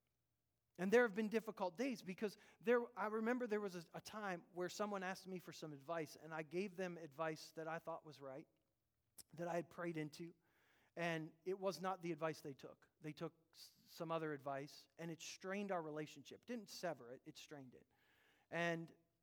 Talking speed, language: 200 wpm, English